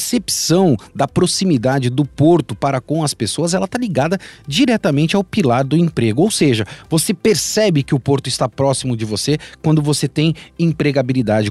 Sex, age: male, 40-59